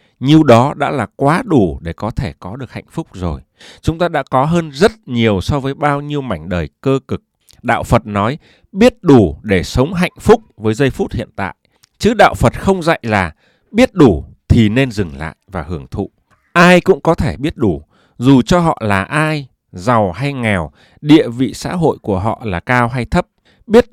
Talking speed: 210 wpm